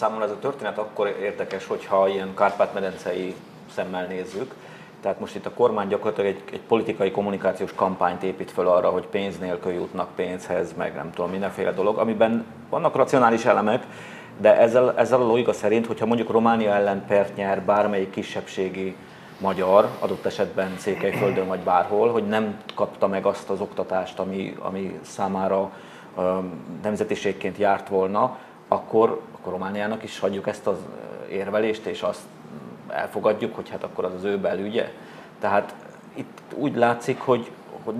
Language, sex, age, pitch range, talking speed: Hungarian, male, 30-49, 95-110 Hz, 145 wpm